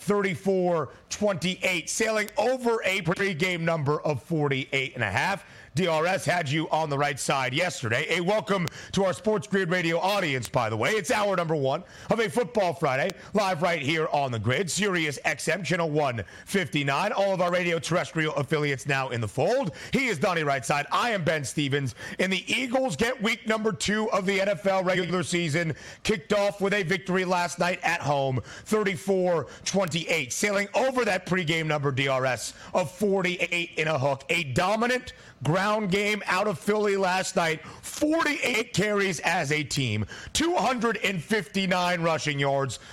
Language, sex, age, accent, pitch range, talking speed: English, male, 40-59, American, 155-210 Hz, 160 wpm